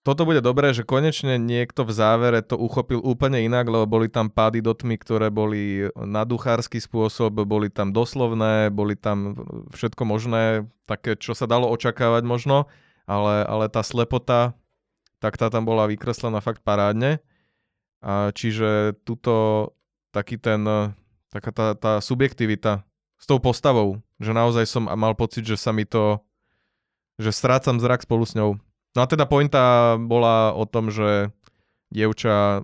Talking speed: 150 wpm